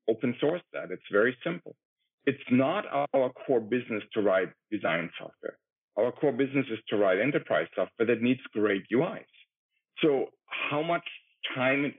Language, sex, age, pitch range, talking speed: English, male, 50-69, 110-135 Hz, 160 wpm